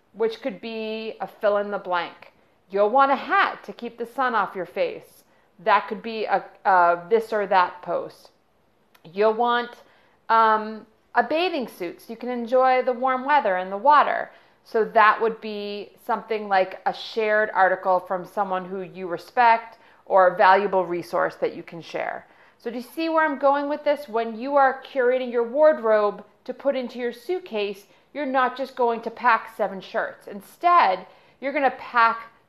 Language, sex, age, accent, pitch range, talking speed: English, female, 40-59, American, 195-245 Hz, 185 wpm